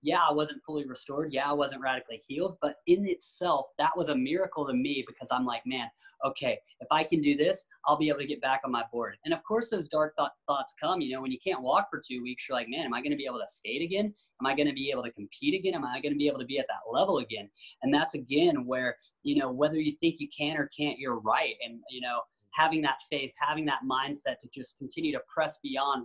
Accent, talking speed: American, 270 wpm